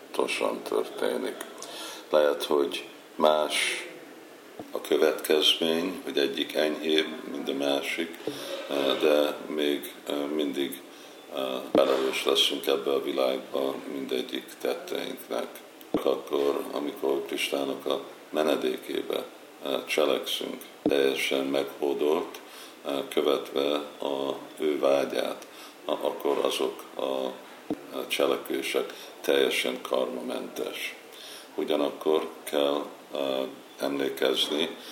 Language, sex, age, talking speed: Hungarian, male, 50-69, 75 wpm